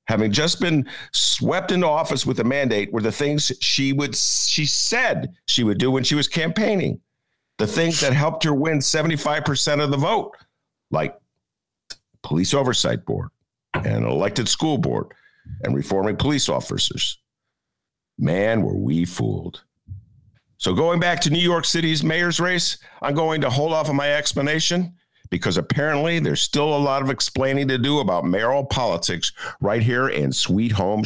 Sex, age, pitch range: male, 50-69, 120-150 Hz